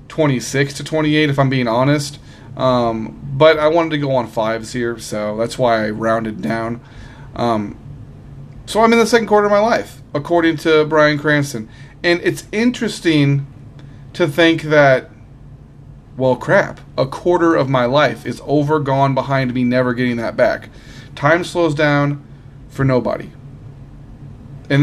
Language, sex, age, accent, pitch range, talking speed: English, male, 30-49, American, 130-155 Hz, 155 wpm